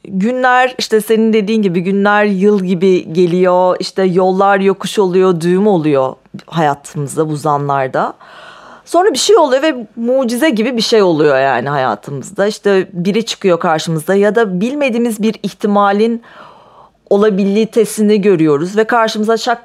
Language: Turkish